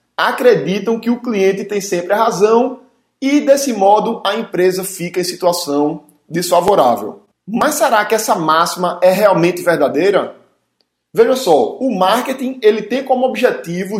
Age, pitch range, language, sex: 20-39, 185-245 Hz, Portuguese, male